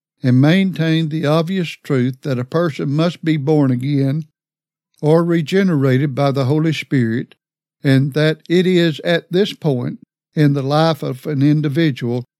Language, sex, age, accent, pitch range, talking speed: English, male, 60-79, American, 135-160 Hz, 150 wpm